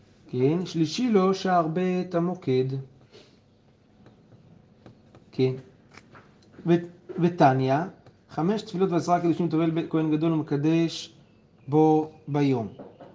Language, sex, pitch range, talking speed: Hebrew, male, 135-165 Hz, 85 wpm